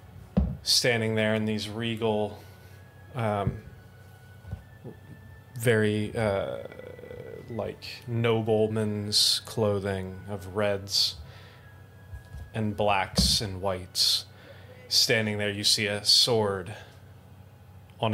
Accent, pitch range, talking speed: American, 100-110 Hz, 80 wpm